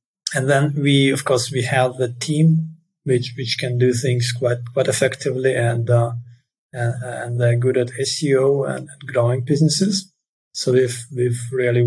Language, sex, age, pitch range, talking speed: English, male, 30-49, 120-130 Hz, 155 wpm